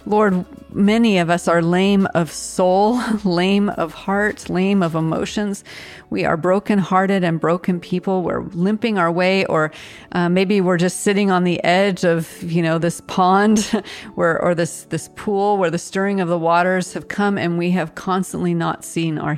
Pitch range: 160-190 Hz